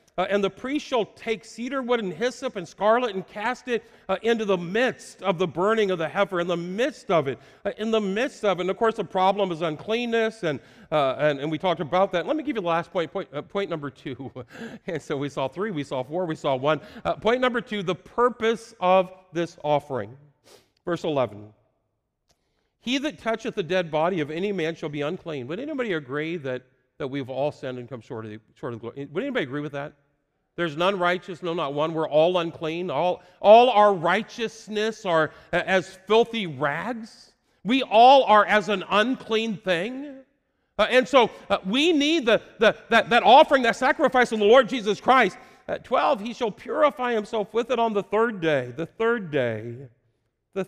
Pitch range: 150-225 Hz